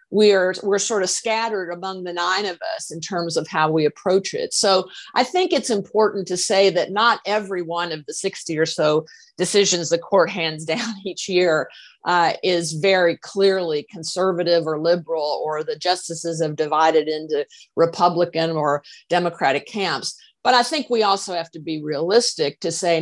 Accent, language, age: American, English, 50-69